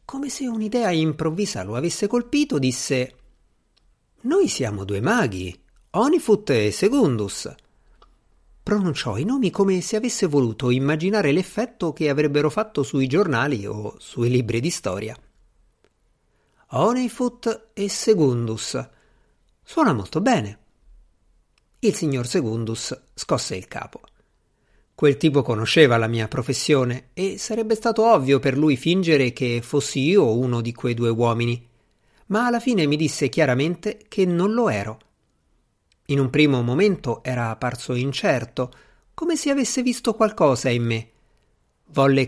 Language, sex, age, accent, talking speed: Italian, male, 50-69, native, 130 wpm